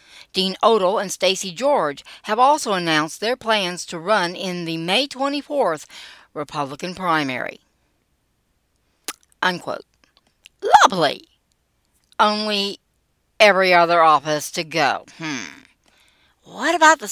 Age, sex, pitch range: 60-79, female, 170-260 Hz